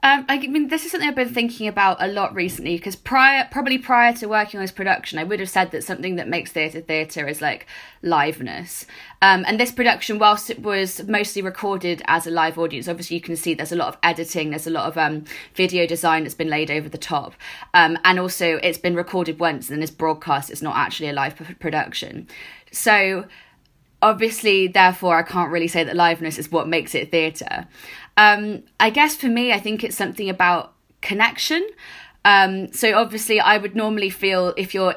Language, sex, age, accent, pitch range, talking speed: English, female, 20-39, British, 165-200 Hz, 210 wpm